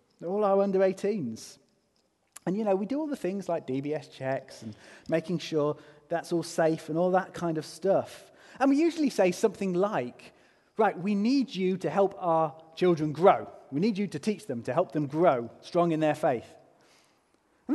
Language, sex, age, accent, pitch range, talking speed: English, male, 30-49, British, 160-230 Hz, 195 wpm